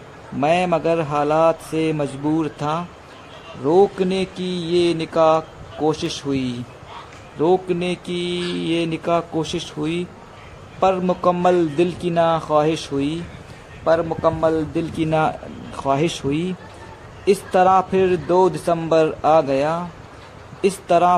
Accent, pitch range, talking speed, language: native, 150-180 Hz, 115 wpm, Hindi